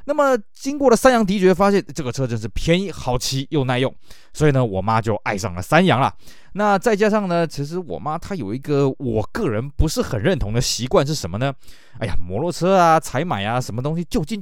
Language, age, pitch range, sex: Chinese, 20-39, 115-170 Hz, male